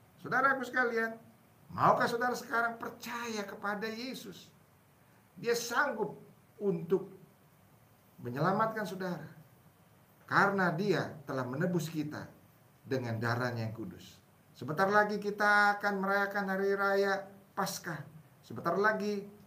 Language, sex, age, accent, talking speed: English, male, 50-69, Indonesian, 100 wpm